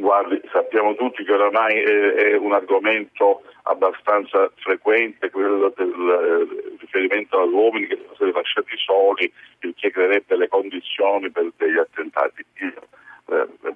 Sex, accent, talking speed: male, native, 135 wpm